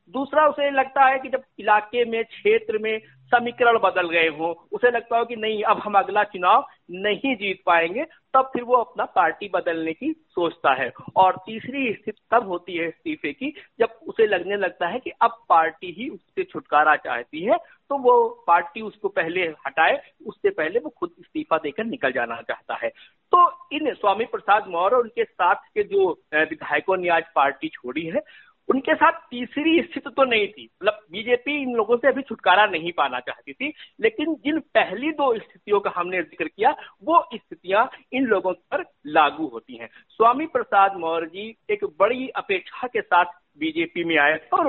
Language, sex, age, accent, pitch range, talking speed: Hindi, male, 50-69, native, 185-305 Hz, 180 wpm